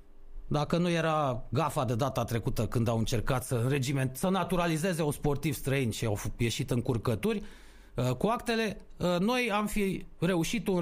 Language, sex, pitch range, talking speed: Romanian, male, 110-185 Hz, 165 wpm